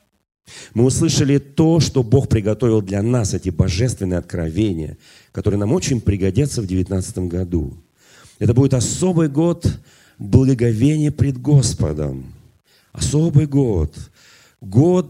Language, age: Russian, 40-59